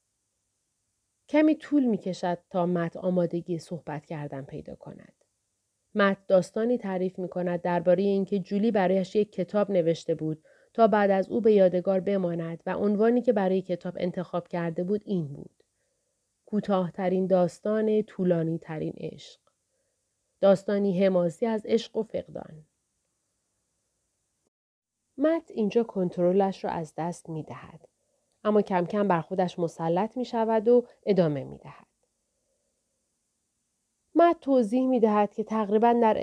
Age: 30-49